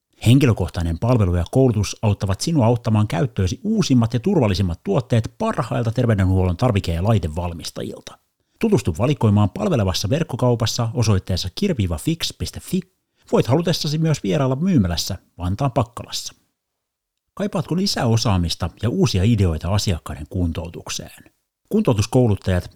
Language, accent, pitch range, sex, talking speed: Finnish, native, 90-125 Hz, male, 105 wpm